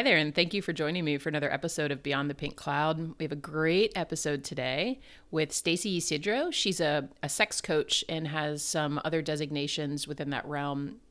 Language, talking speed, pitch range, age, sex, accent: English, 205 wpm, 150-200 Hz, 30-49, female, American